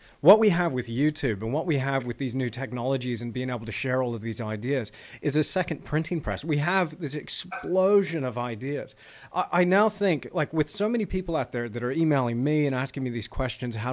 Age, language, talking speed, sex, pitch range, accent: 30-49, English, 235 wpm, male, 120-150 Hz, American